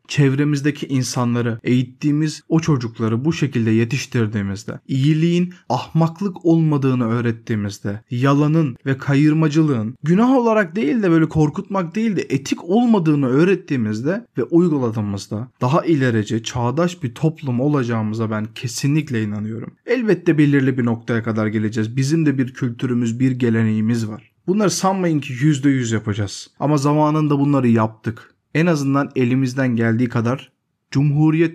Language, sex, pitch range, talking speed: Turkish, male, 115-150 Hz, 125 wpm